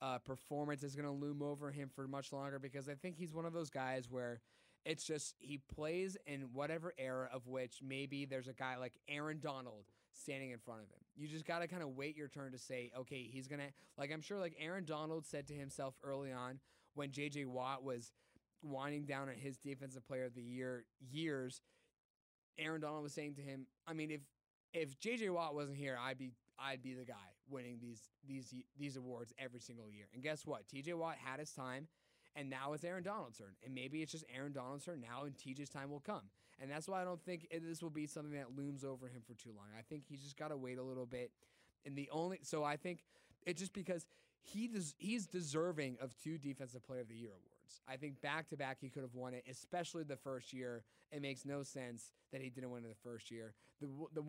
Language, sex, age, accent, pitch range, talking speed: English, male, 20-39, American, 130-155 Hz, 230 wpm